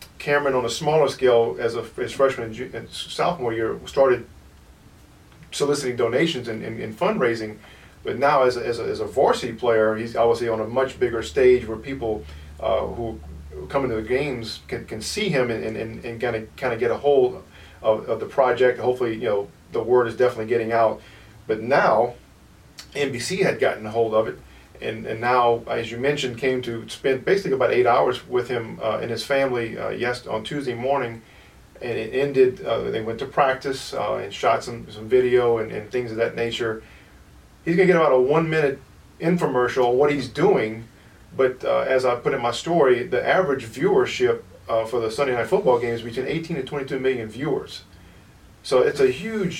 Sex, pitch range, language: male, 110-140 Hz, English